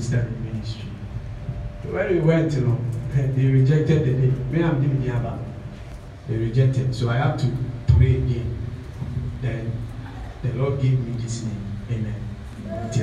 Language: English